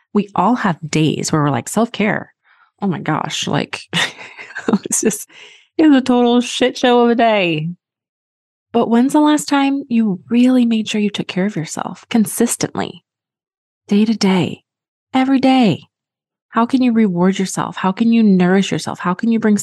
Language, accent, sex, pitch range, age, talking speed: English, American, female, 170-220 Hz, 30-49, 170 wpm